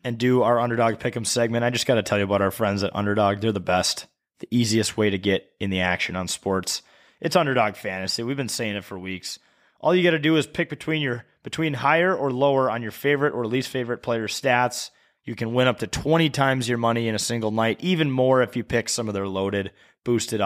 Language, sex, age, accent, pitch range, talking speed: English, male, 20-39, American, 105-130 Hz, 245 wpm